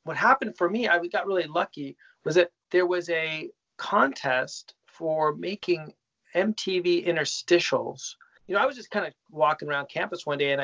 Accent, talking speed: American, 175 wpm